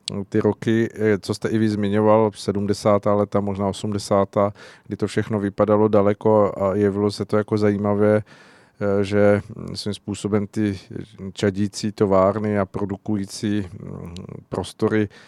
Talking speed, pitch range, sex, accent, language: 120 wpm, 100-110 Hz, male, native, Czech